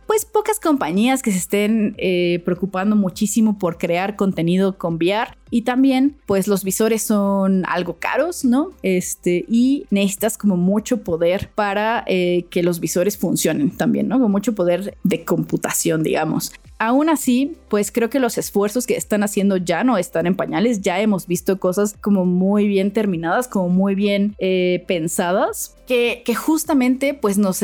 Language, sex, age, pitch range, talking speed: Spanish, female, 20-39, 190-235 Hz, 165 wpm